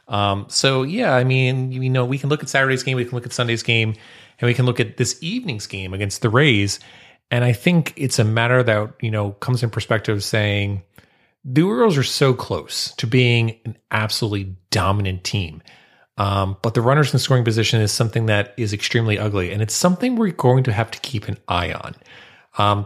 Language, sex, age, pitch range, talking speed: English, male, 30-49, 100-130 Hz, 210 wpm